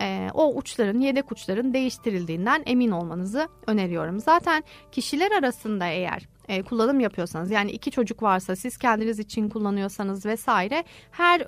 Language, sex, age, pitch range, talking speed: Turkish, female, 30-49, 195-295 Hz, 130 wpm